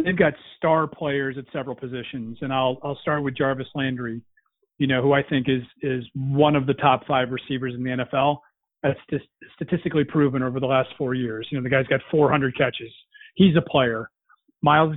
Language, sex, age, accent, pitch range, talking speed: English, male, 40-59, American, 130-155 Hz, 200 wpm